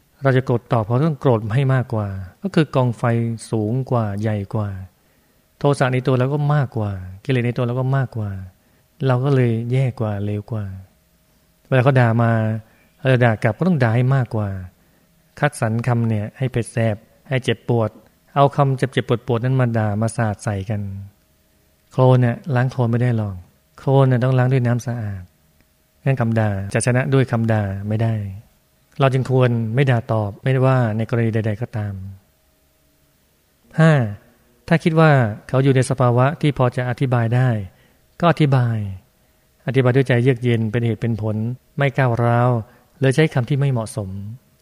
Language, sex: Thai, male